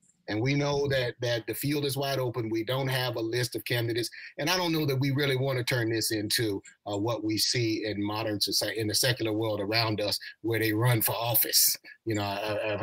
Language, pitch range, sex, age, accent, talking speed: English, 125-170 Hz, male, 30-49, American, 240 wpm